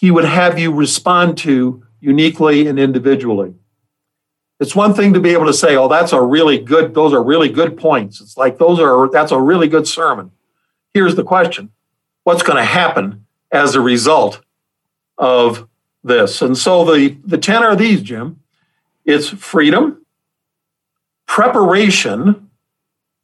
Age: 50-69